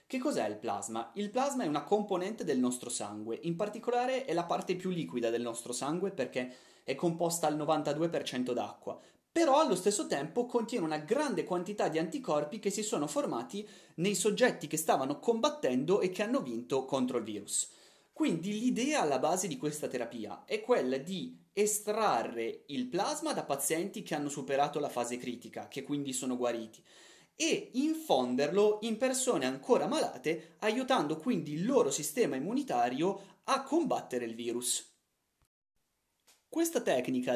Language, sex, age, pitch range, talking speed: Italian, male, 30-49, 135-220 Hz, 155 wpm